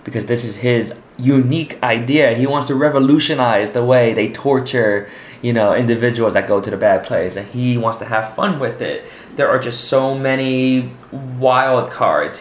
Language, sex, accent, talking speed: English, male, American, 185 wpm